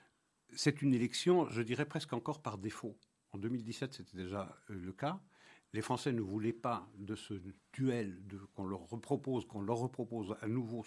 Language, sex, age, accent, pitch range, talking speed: French, male, 70-89, French, 95-120 Hz, 175 wpm